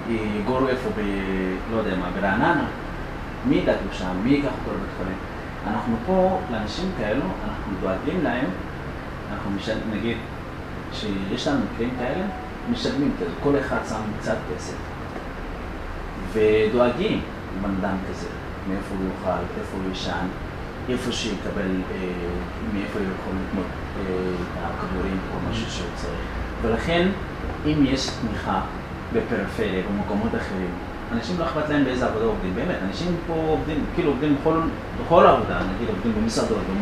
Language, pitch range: English, 90-115 Hz